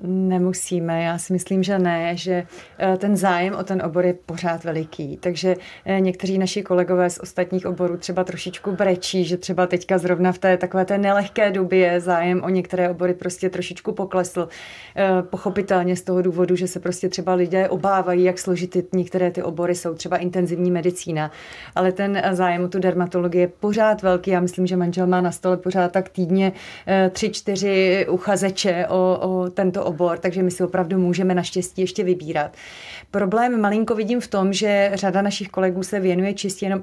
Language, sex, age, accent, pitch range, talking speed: Czech, female, 30-49, native, 180-195 Hz, 180 wpm